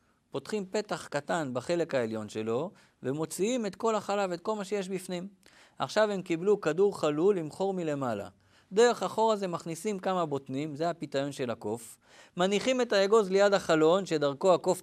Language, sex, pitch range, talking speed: Hebrew, male, 130-185 Hz, 160 wpm